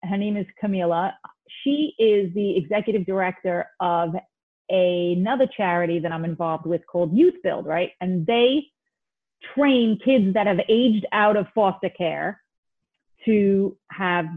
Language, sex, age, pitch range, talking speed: English, female, 30-49, 180-230 Hz, 140 wpm